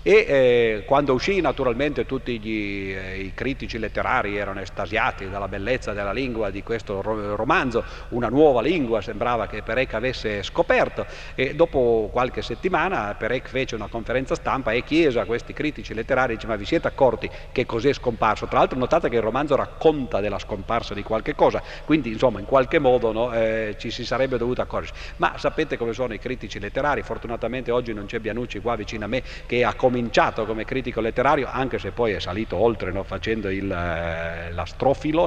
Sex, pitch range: male, 105-130 Hz